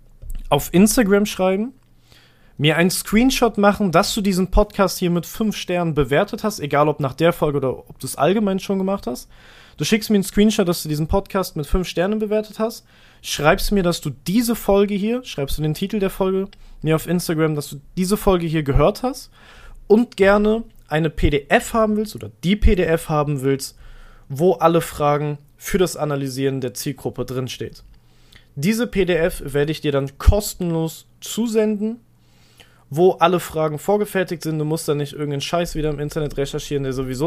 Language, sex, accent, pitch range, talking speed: German, male, German, 140-190 Hz, 180 wpm